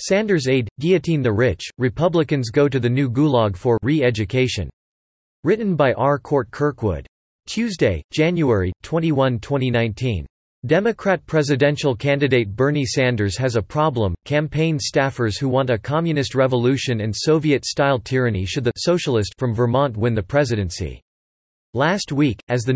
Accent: American